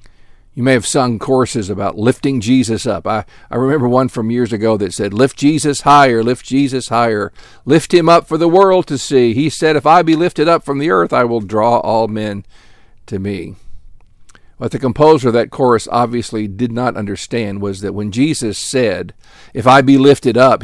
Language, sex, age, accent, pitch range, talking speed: English, male, 50-69, American, 100-125 Hz, 200 wpm